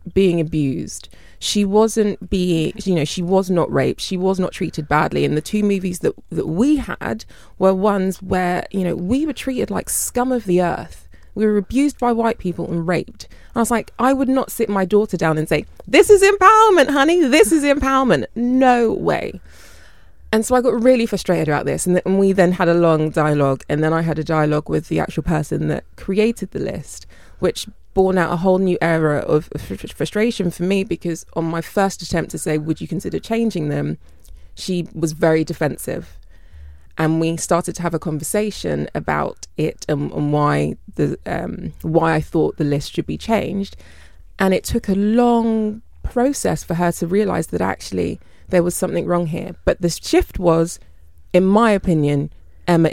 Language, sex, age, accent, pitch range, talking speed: English, female, 20-39, British, 155-210 Hz, 190 wpm